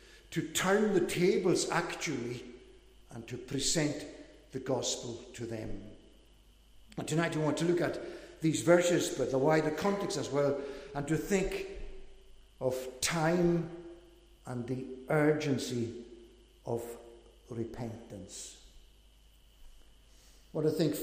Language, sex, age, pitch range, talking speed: English, male, 60-79, 135-180 Hz, 115 wpm